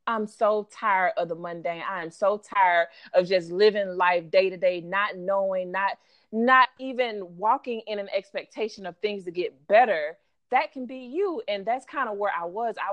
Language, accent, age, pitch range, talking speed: English, American, 30-49, 180-245 Hz, 200 wpm